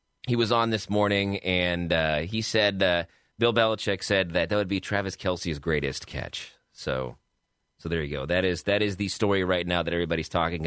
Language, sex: English, male